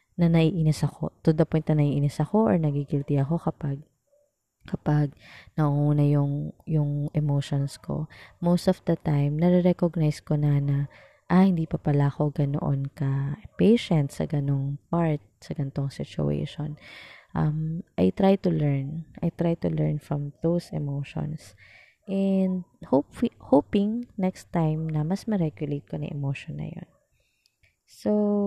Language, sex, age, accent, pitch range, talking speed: Filipino, female, 20-39, native, 145-175 Hz, 135 wpm